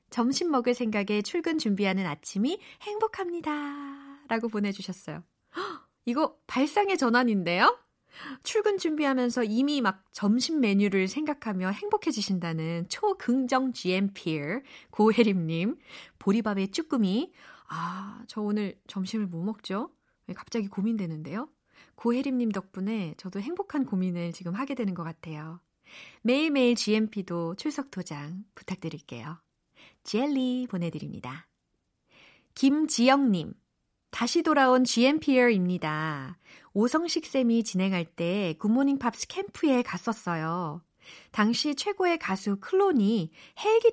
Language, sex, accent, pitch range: Korean, female, native, 190-275 Hz